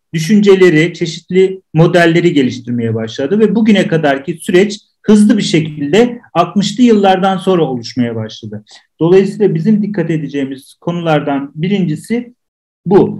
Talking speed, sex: 110 wpm, male